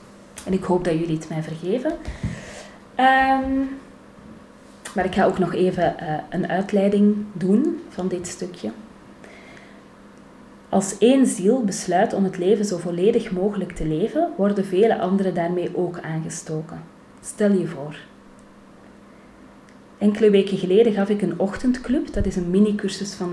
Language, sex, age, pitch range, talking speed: Dutch, female, 30-49, 175-210 Hz, 140 wpm